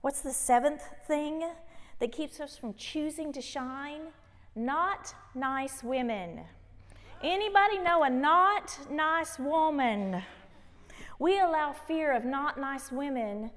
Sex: female